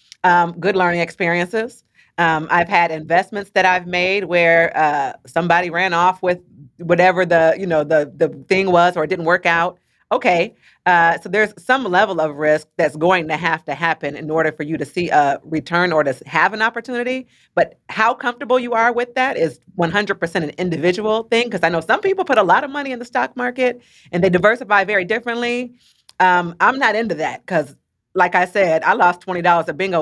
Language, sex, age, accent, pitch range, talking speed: English, female, 30-49, American, 170-220 Hz, 205 wpm